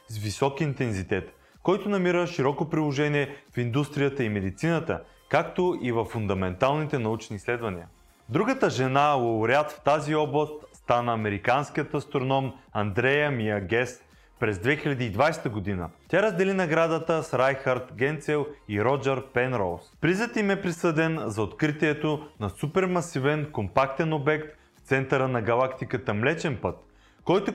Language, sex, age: Bulgarian, male, 30-49